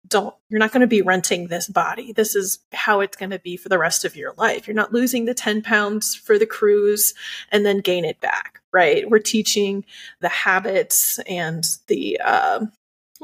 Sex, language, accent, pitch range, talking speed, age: female, English, American, 195-250 Hz, 200 wpm, 30-49